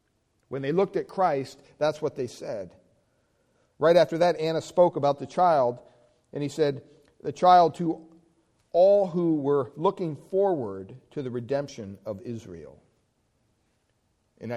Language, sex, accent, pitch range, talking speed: English, male, American, 120-165 Hz, 140 wpm